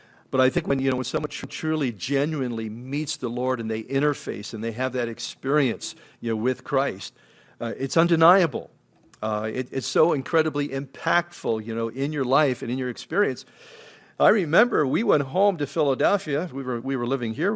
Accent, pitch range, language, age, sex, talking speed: American, 120-150 Hz, English, 50-69, male, 190 wpm